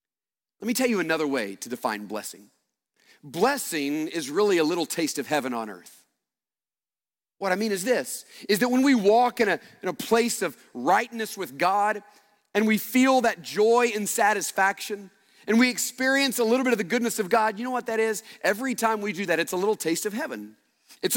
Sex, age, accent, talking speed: male, 40-59, American, 205 wpm